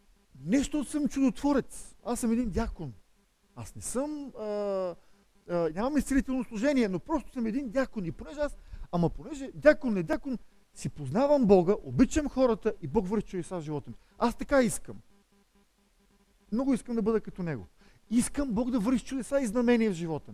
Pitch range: 185-235 Hz